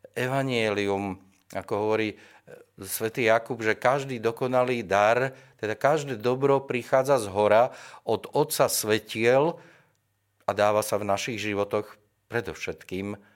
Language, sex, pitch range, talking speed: Slovak, male, 90-110 Hz, 110 wpm